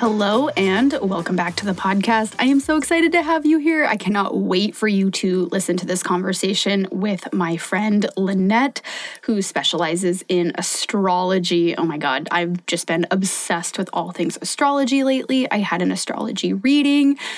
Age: 20-39